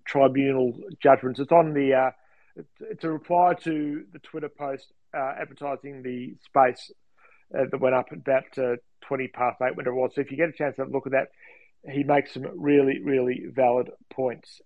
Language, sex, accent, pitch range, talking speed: English, male, Australian, 130-155 Hz, 195 wpm